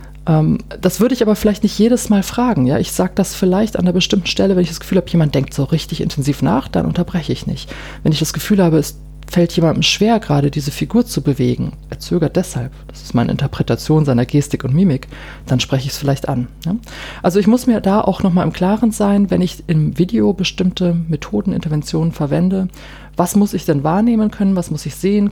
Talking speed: 215 wpm